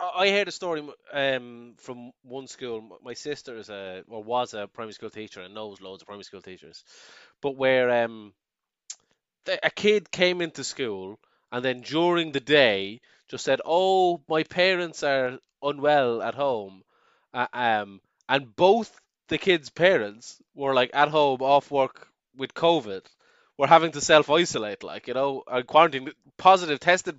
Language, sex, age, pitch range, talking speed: English, male, 20-39, 120-165 Hz, 160 wpm